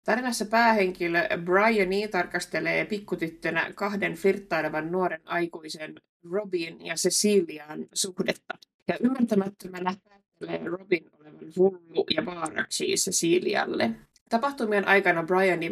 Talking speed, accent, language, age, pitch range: 95 wpm, native, Finnish, 20-39, 165-200 Hz